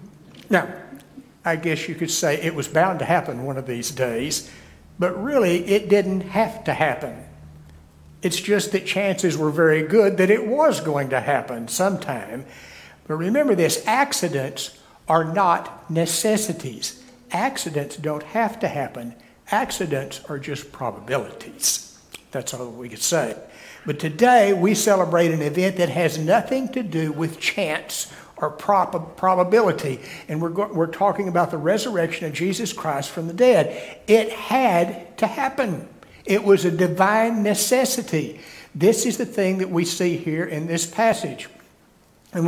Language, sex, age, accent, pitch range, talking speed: English, male, 60-79, American, 160-205 Hz, 150 wpm